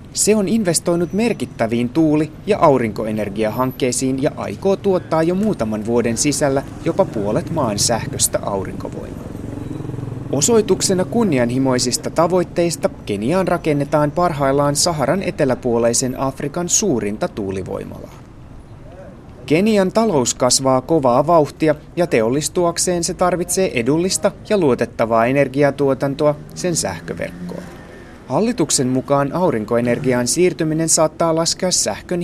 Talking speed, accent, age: 95 wpm, native, 30-49